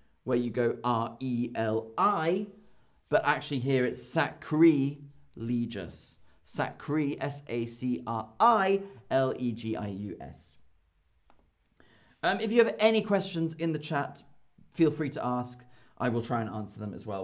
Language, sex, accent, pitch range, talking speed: English, male, British, 110-160 Hz, 115 wpm